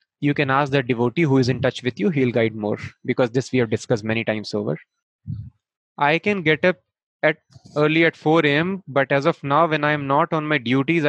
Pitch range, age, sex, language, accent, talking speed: 125-155 Hz, 20-39, male, English, Indian, 220 wpm